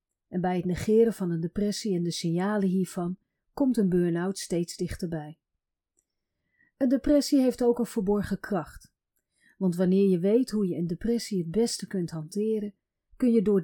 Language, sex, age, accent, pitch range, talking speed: Dutch, female, 40-59, Dutch, 180-225 Hz, 165 wpm